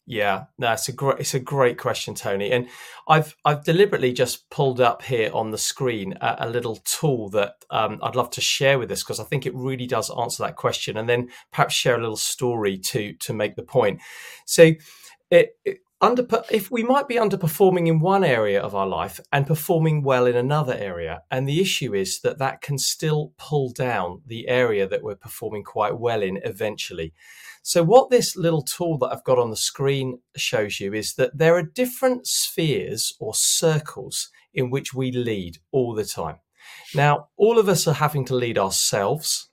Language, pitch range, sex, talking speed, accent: English, 125-165 Hz, male, 195 wpm, British